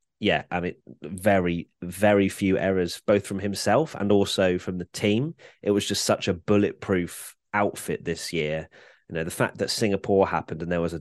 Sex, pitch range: male, 90-105 Hz